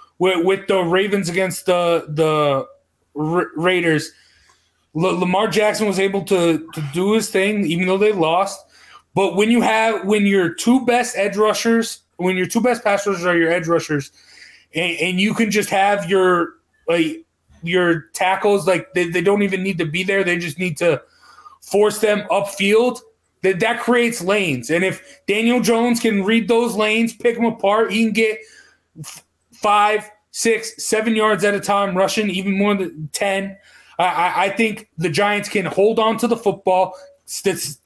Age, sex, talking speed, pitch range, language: 30-49, male, 170 wpm, 175-215 Hz, English